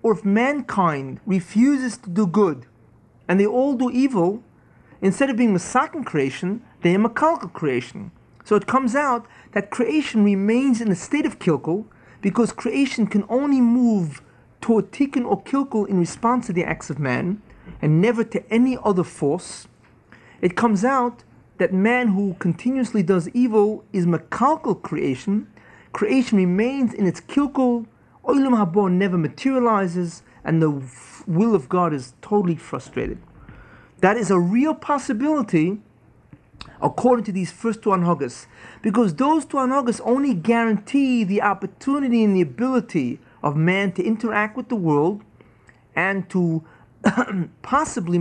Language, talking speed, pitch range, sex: English, 145 wpm, 170-240 Hz, male